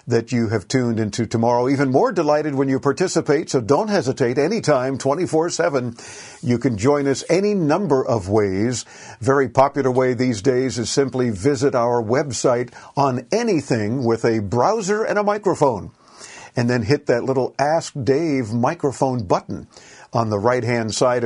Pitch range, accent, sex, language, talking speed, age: 120-145 Hz, American, male, English, 160 wpm, 50-69